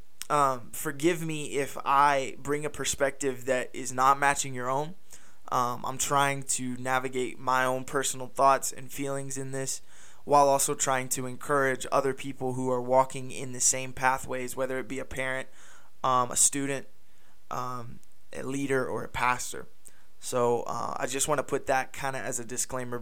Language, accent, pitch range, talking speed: English, American, 125-140 Hz, 175 wpm